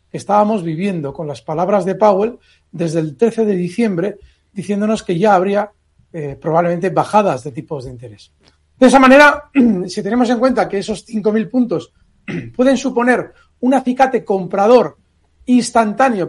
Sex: male